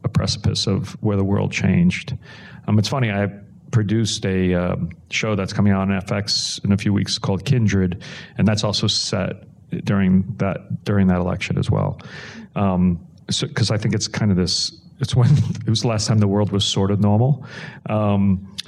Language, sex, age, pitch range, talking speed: English, male, 40-59, 95-120 Hz, 195 wpm